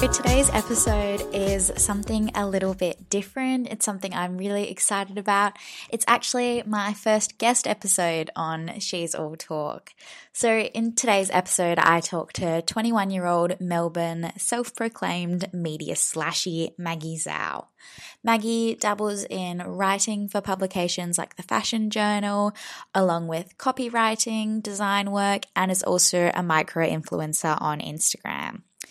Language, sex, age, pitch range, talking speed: English, female, 20-39, 170-210 Hz, 125 wpm